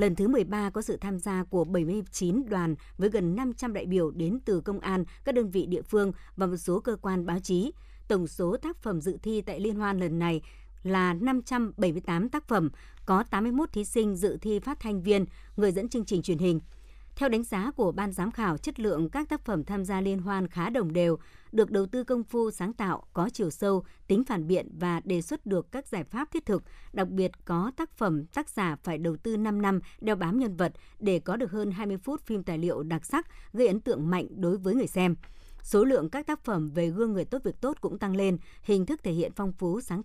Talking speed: 235 wpm